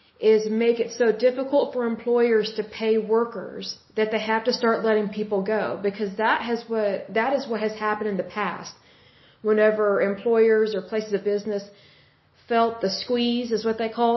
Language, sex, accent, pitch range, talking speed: Hindi, female, American, 200-225 Hz, 180 wpm